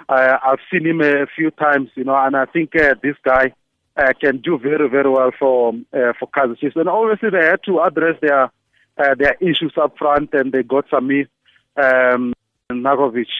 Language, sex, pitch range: English, male, 130-160 Hz